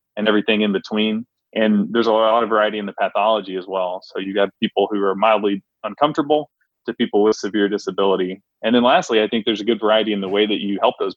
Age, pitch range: 20-39, 100-115 Hz